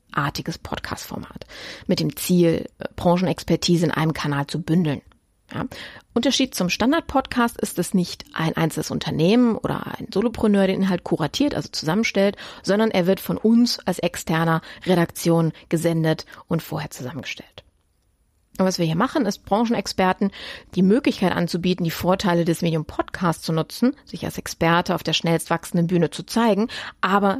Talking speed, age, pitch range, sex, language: 150 wpm, 30-49, 165-210 Hz, female, German